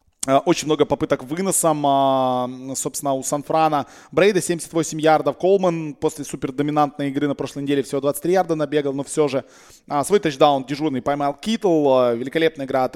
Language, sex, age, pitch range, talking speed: Russian, male, 20-39, 130-160 Hz, 155 wpm